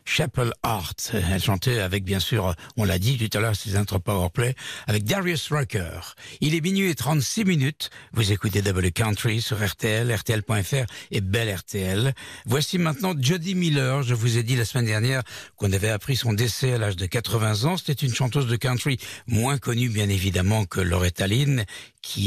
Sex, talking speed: male, 185 wpm